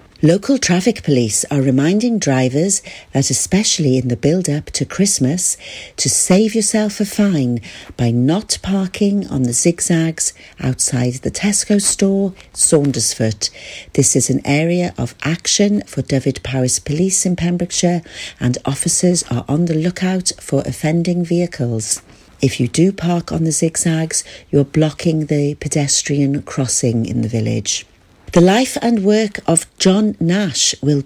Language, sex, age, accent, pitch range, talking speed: English, female, 50-69, British, 130-190 Hz, 140 wpm